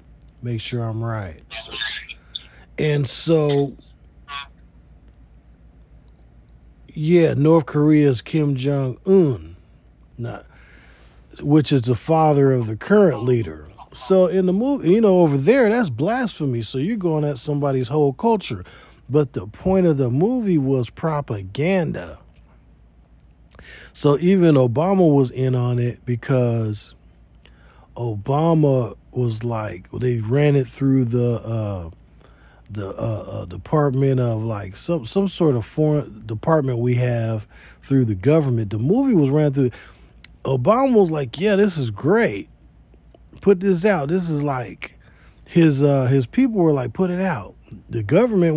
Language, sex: English, male